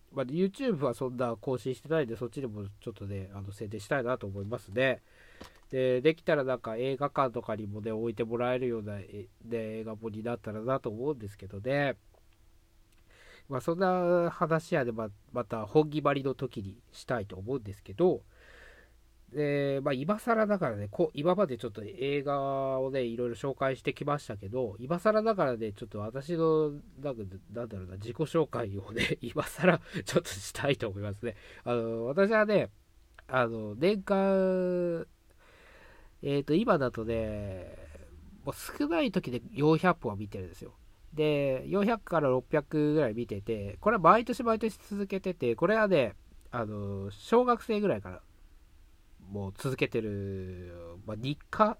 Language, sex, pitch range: Japanese, male, 100-150 Hz